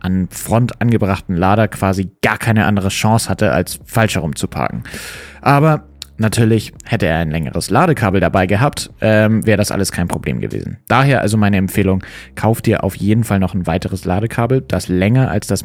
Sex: male